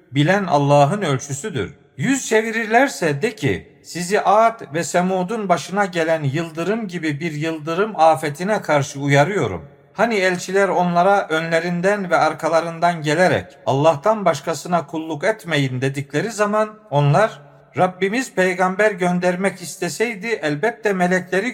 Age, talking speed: 50-69, 110 wpm